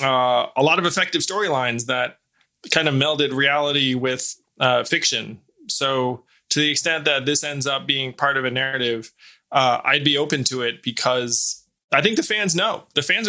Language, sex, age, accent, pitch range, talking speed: English, male, 20-39, American, 130-185 Hz, 185 wpm